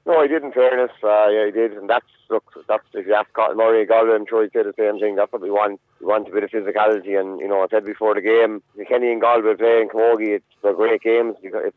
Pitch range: 100-115 Hz